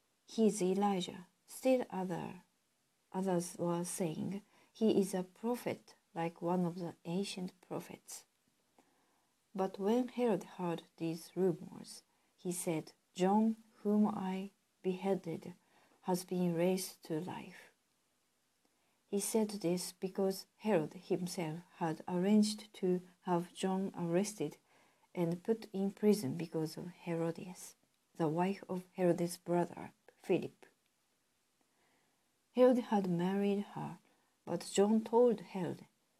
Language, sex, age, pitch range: Japanese, female, 50-69, 170-210 Hz